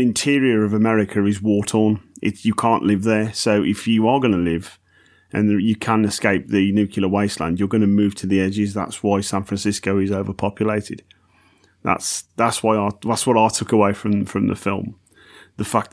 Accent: British